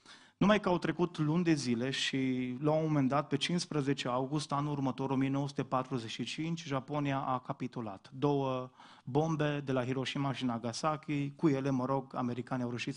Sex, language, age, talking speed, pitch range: male, Romanian, 30-49, 155 wpm, 125-150 Hz